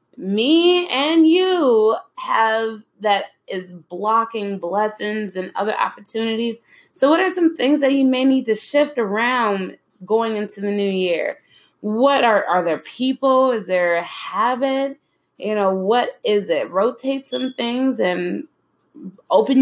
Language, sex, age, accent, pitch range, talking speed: English, female, 20-39, American, 185-260 Hz, 145 wpm